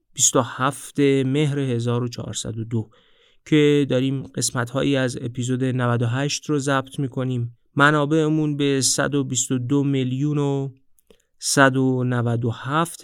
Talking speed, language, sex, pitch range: 95 wpm, Persian, male, 120-140 Hz